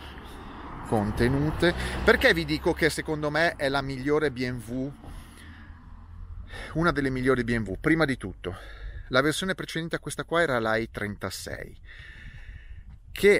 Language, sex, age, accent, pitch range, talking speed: Italian, male, 30-49, native, 100-155 Hz, 125 wpm